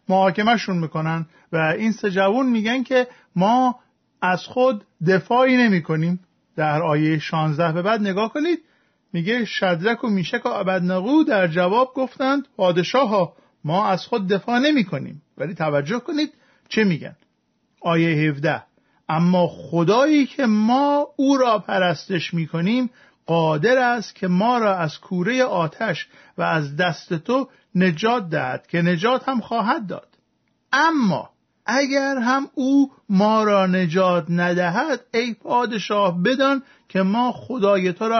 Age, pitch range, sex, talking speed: 50-69, 175-245 Hz, male, 140 wpm